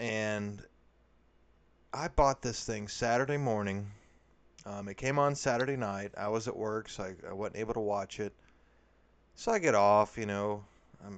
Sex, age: male, 30-49